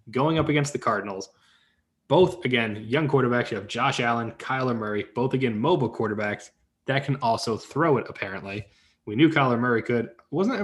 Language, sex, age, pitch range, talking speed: English, male, 20-39, 105-140 Hz, 175 wpm